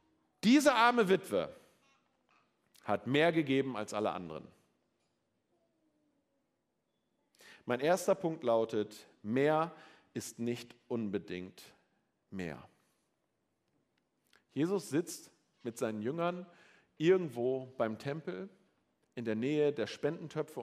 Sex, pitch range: male, 135-205 Hz